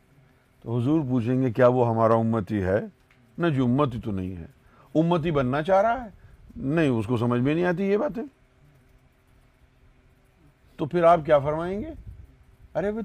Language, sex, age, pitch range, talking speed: Urdu, male, 50-69, 130-205 Hz, 160 wpm